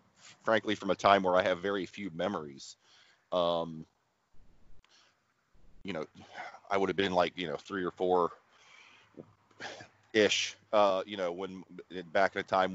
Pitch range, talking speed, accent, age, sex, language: 85-100 Hz, 150 wpm, American, 40-59, male, English